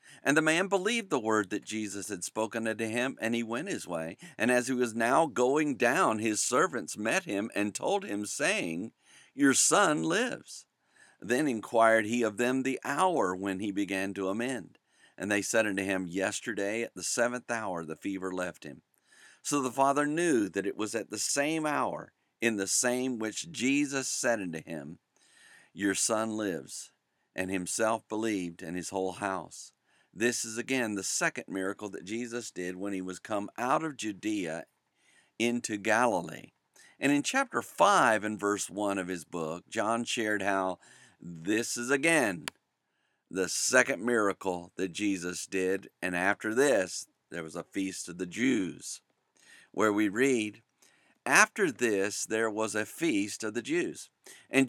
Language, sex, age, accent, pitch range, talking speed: English, male, 50-69, American, 95-125 Hz, 170 wpm